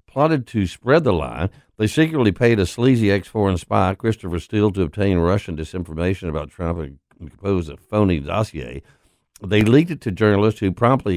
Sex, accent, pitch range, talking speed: male, American, 95-130 Hz, 170 wpm